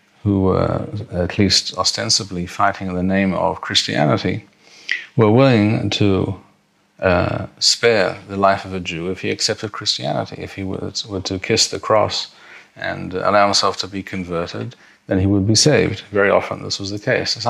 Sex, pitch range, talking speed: male, 95-110 Hz, 170 wpm